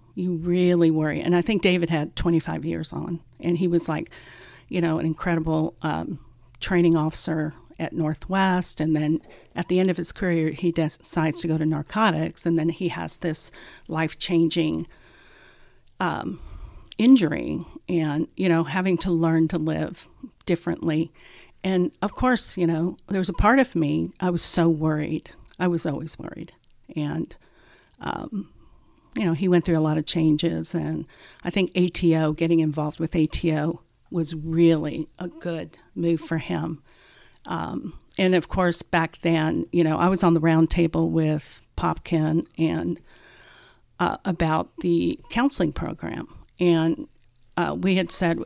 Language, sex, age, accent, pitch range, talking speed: English, female, 50-69, American, 160-180 Hz, 155 wpm